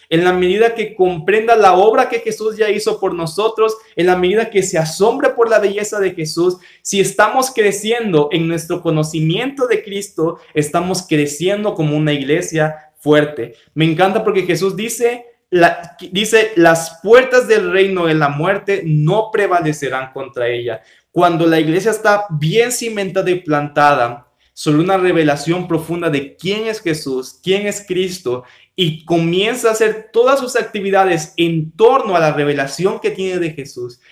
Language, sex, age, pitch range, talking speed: Spanish, male, 20-39, 155-215 Hz, 160 wpm